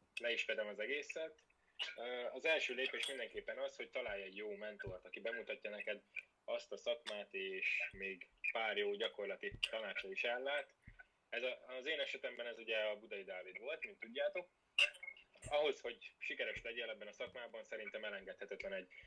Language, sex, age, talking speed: Hungarian, male, 10-29, 165 wpm